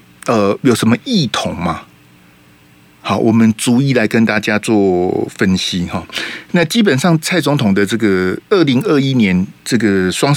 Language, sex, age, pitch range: Chinese, male, 50-69, 95-140 Hz